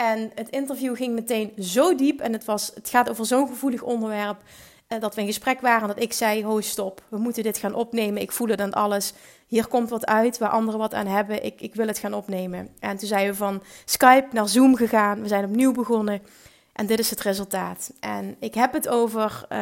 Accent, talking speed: Dutch, 225 wpm